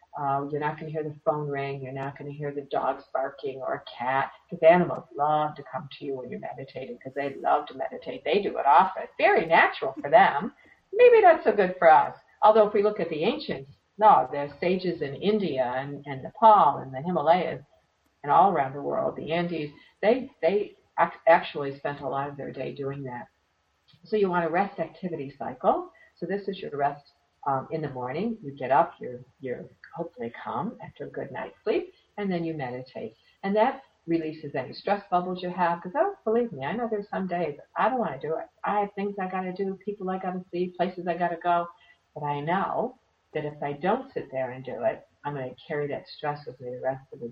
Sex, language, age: female, English, 50-69